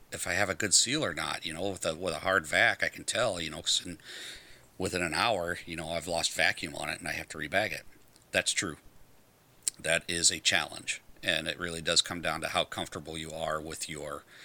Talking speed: 235 wpm